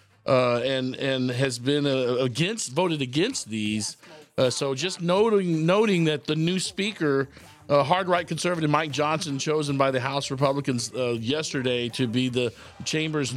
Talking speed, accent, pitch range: 160 wpm, American, 120-145 Hz